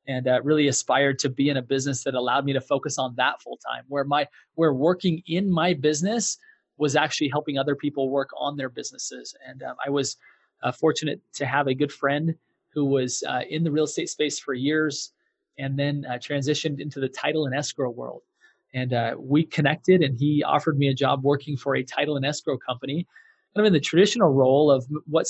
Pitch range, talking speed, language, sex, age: 135-155 Hz, 215 wpm, English, male, 20-39